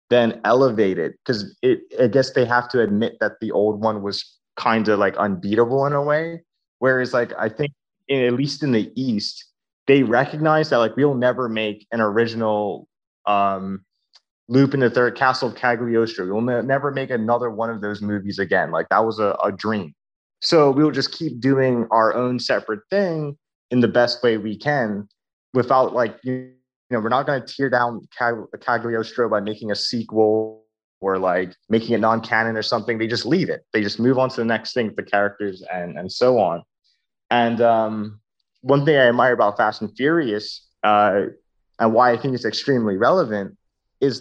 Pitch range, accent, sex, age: 110-135 Hz, American, male, 20-39